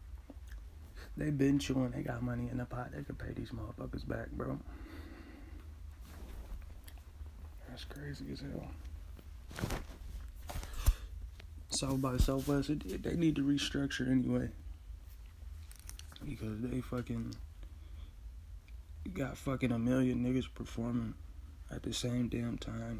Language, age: English, 20-39